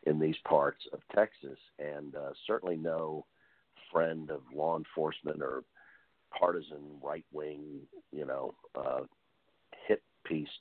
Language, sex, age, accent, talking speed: English, male, 50-69, American, 125 wpm